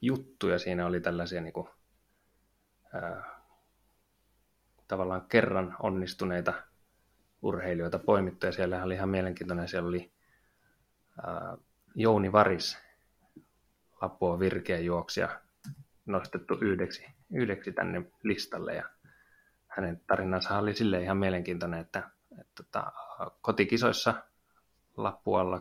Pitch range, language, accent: 90-95 Hz, Finnish, native